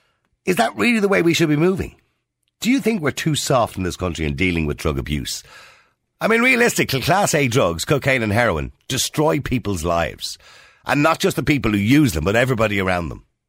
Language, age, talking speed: English, 50-69, 210 wpm